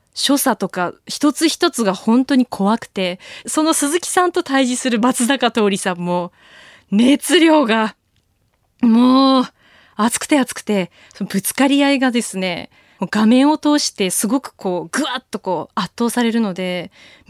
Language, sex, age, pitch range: Japanese, female, 20-39, 190-270 Hz